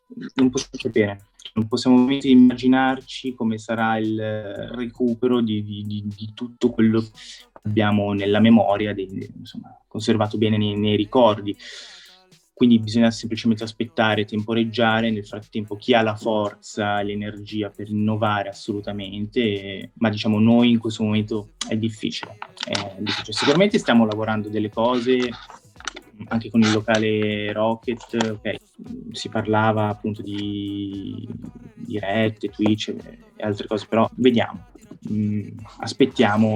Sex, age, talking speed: male, 20-39, 125 wpm